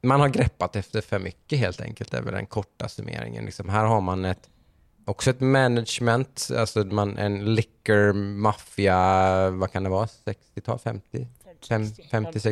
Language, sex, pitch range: Swedish, male, 95-110 Hz